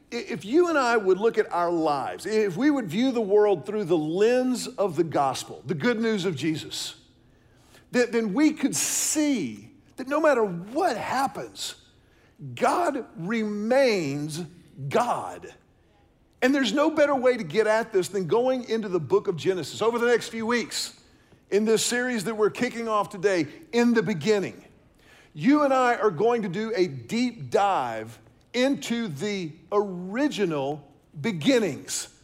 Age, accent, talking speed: 50-69, American, 155 wpm